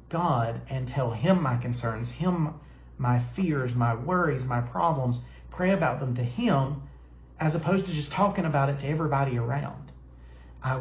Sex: male